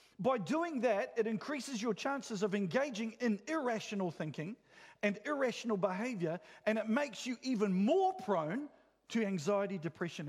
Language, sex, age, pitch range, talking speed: English, male, 40-59, 200-265 Hz, 145 wpm